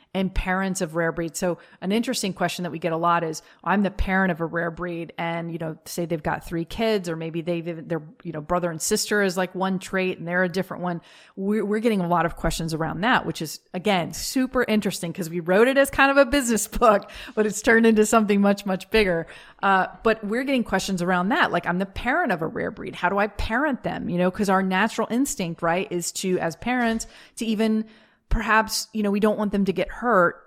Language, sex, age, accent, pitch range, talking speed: English, female, 30-49, American, 170-215 Hz, 245 wpm